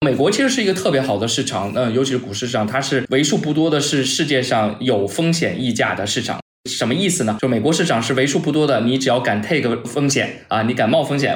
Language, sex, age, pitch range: Chinese, male, 20-39, 115-145 Hz